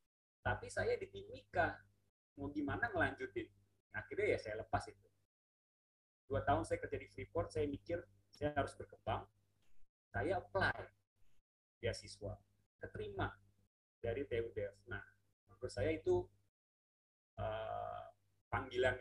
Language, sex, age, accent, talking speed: Indonesian, male, 30-49, native, 110 wpm